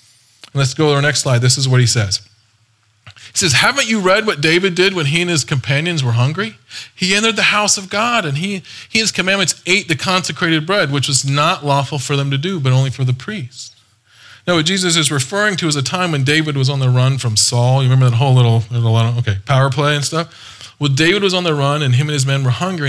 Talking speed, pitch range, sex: 250 wpm, 120-170 Hz, male